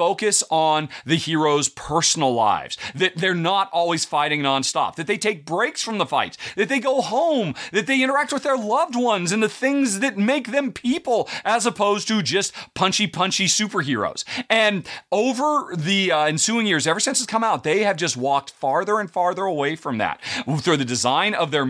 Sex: male